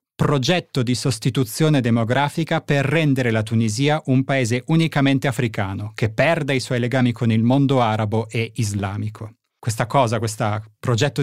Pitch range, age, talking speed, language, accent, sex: 110-135 Hz, 30-49, 145 wpm, Italian, native, male